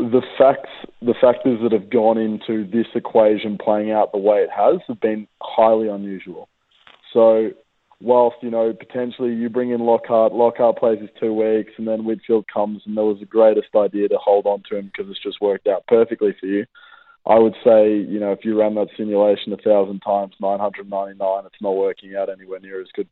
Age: 20-39